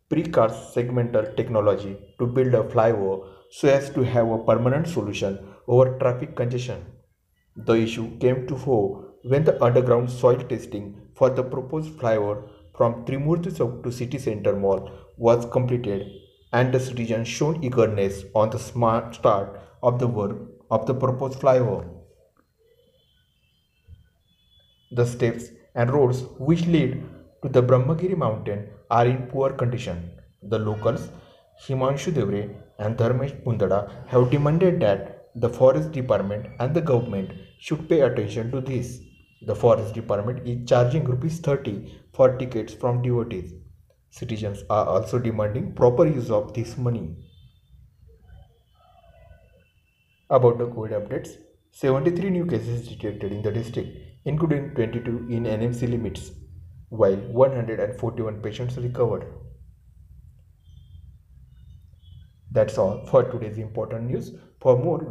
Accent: native